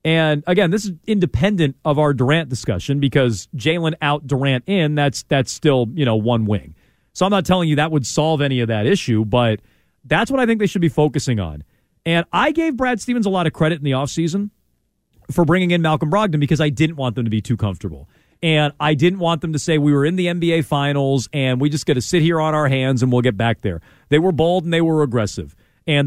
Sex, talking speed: male, 240 wpm